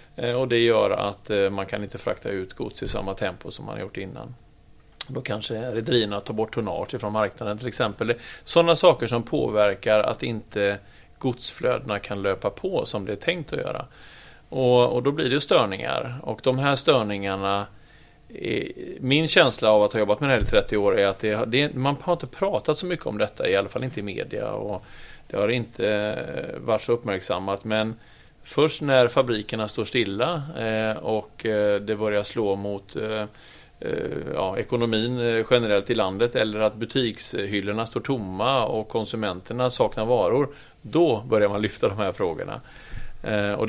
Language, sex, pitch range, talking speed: Swedish, male, 105-125 Hz, 175 wpm